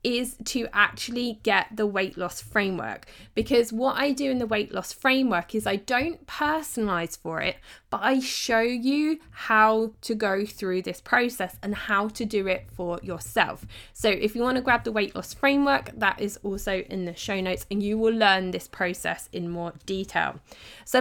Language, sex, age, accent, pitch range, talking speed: English, female, 20-39, British, 185-240 Hz, 190 wpm